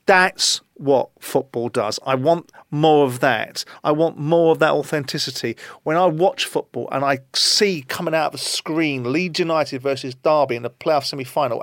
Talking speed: 180 wpm